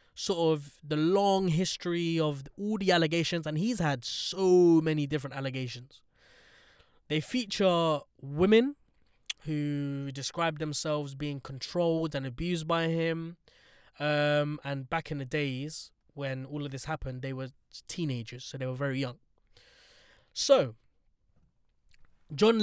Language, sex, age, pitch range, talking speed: English, male, 20-39, 135-170 Hz, 130 wpm